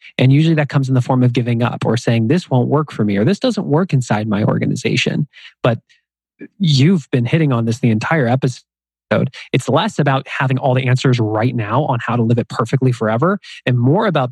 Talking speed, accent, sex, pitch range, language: 220 wpm, American, male, 125-175 Hz, English